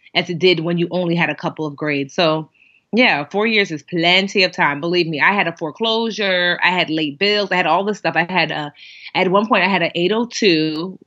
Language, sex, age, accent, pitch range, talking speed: English, female, 30-49, American, 155-195 Hz, 240 wpm